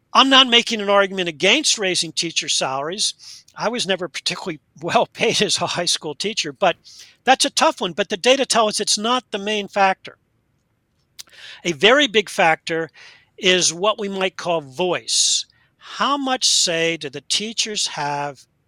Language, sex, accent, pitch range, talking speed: English, male, American, 155-210 Hz, 165 wpm